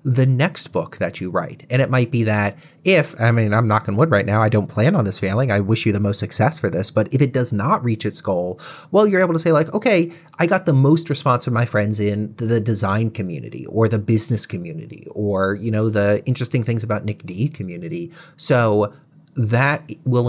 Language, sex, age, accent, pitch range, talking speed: English, male, 30-49, American, 105-145 Hz, 230 wpm